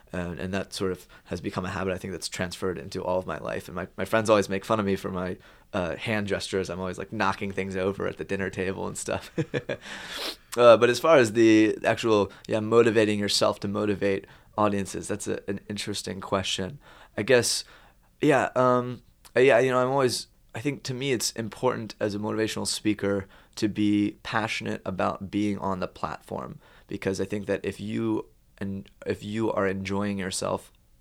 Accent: American